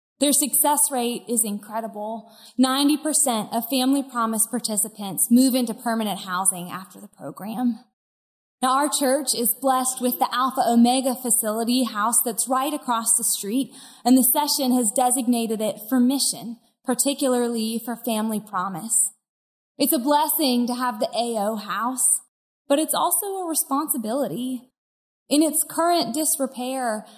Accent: American